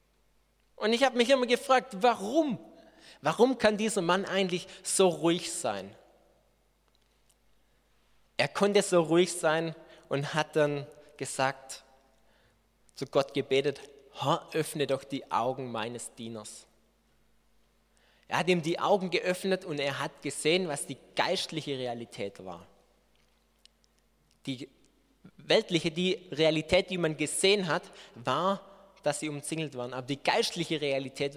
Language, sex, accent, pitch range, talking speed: German, male, German, 135-190 Hz, 125 wpm